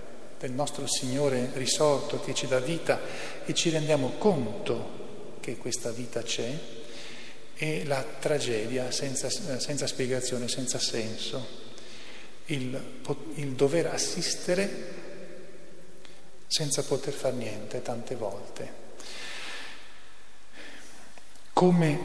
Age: 40-59